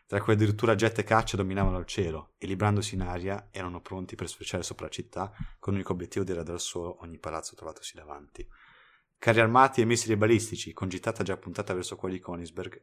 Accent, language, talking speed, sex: native, Italian, 205 wpm, male